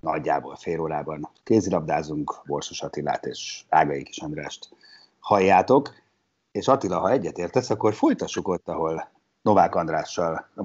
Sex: male